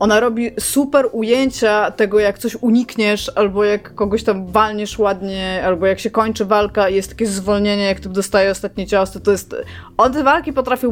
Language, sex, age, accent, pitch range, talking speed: Polish, female, 20-39, native, 195-235 Hz, 180 wpm